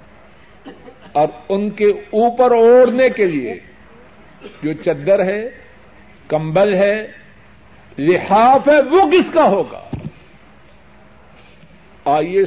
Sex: male